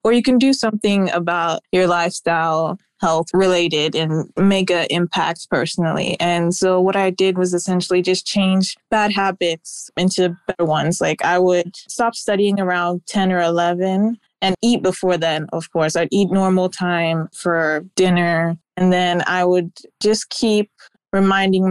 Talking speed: 160 wpm